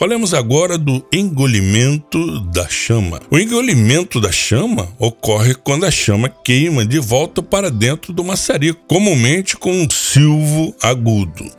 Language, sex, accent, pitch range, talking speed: Portuguese, male, Brazilian, 105-160 Hz, 135 wpm